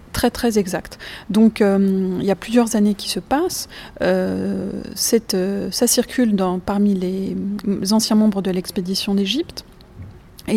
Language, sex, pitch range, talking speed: French, female, 195-235 Hz, 150 wpm